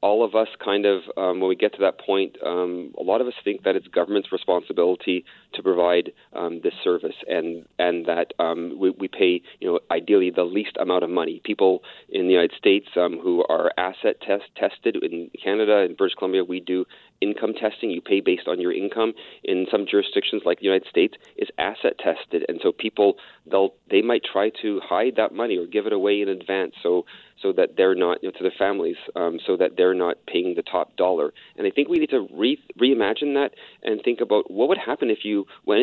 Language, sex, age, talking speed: English, male, 30-49, 220 wpm